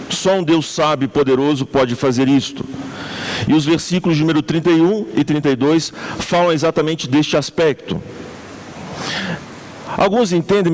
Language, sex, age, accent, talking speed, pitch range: Portuguese, male, 50-69, Brazilian, 125 wpm, 140-180 Hz